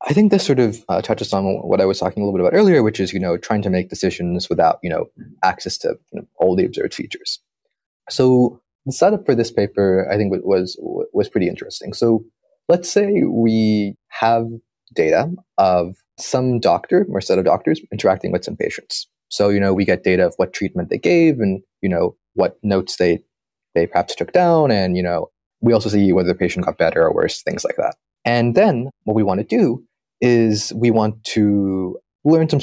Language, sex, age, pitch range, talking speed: English, male, 20-39, 95-135 Hz, 210 wpm